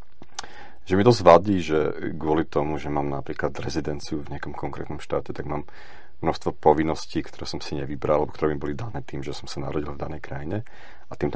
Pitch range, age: 70-85 Hz, 40-59